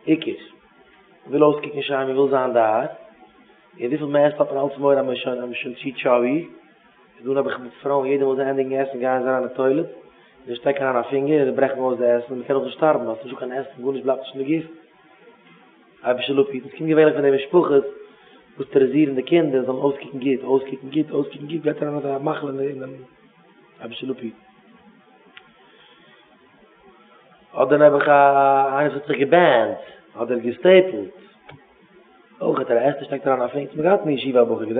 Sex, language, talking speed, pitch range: male, English, 135 wpm, 135-160 Hz